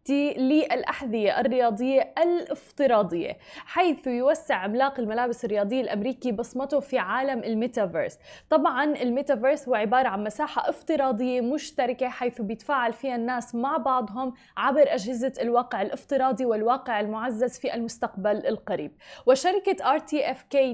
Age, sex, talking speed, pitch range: 20-39, female, 115 wpm, 235-280 Hz